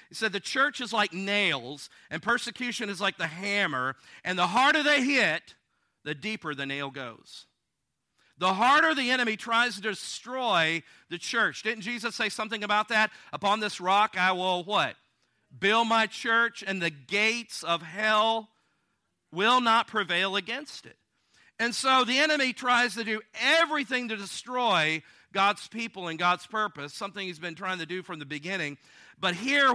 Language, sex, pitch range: English, male, 150-220 Hz